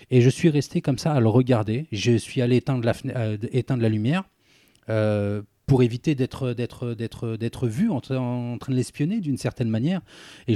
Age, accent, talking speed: 30-49, French, 210 wpm